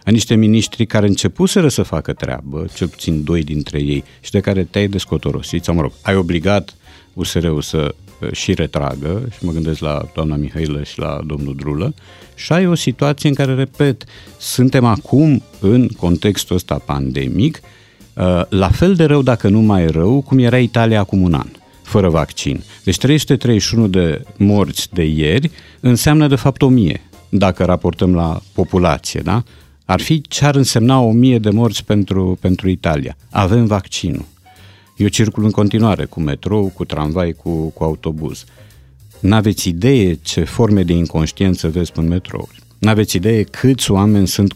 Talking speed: 165 wpm